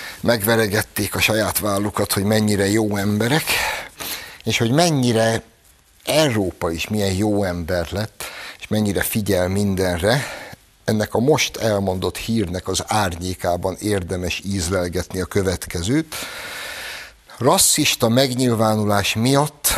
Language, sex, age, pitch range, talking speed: Hungarian, male, 60-79, 100-125 Hz, 105 wpm